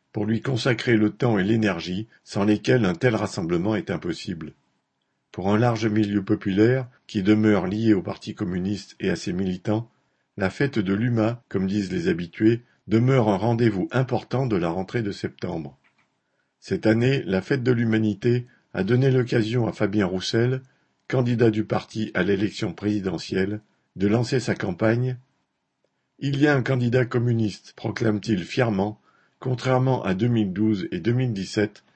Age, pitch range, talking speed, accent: 50-69, 100-125 Hz, 155 wpm, French